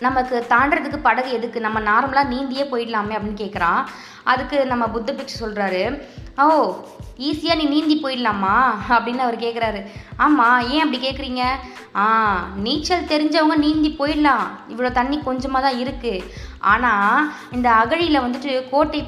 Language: Tamil